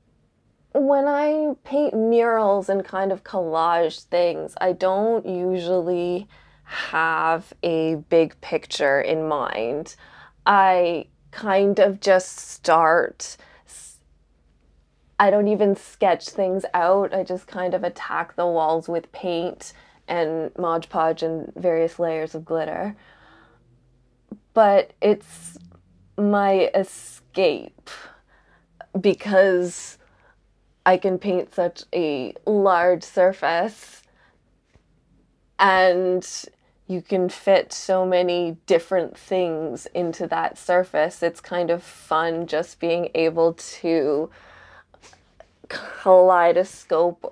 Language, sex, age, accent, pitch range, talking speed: English, female, 20-39, American, 165-190 Hz, 100 wpm